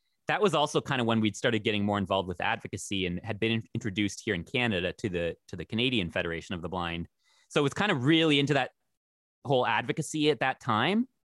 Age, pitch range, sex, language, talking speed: 30-49, 95-125 Hz, male, English, 230 wpm